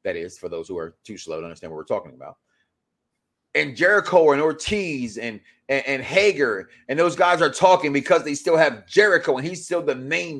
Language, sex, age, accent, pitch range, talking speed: English, male, 30-49, American, 140-220 Hz, 210 wpm